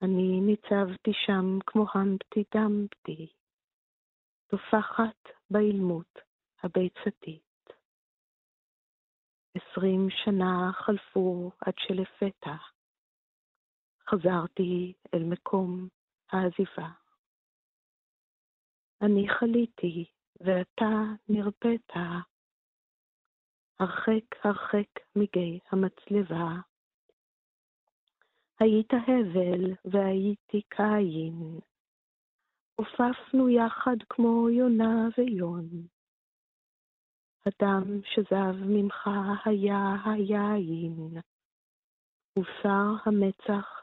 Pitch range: 180-210 Hz